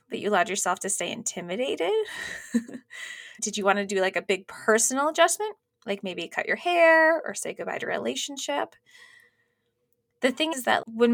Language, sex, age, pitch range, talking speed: English, female, 20-39, 195-325 Hz, 180 wpm